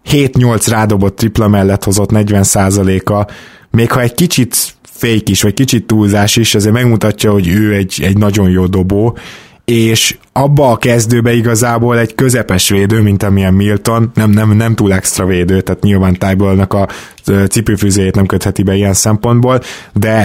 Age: 20-39